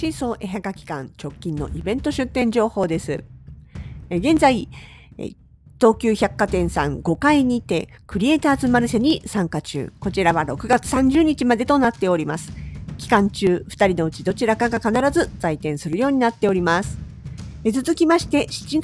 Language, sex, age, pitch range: Japanese, female, 50-69, 175-280 Hz